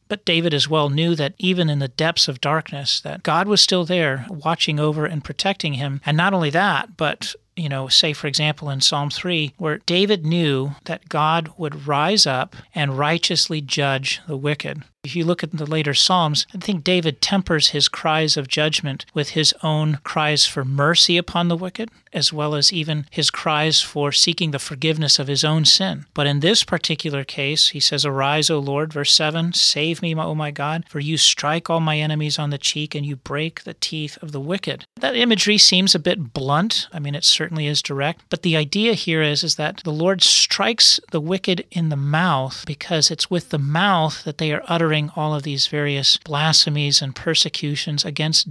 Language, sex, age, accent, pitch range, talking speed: English, male, 40-59, American, 145-170 Hz, 205 wpm